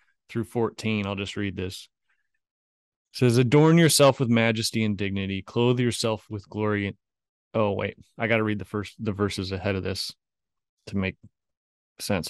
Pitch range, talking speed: 100-115 Hz, 155 wpm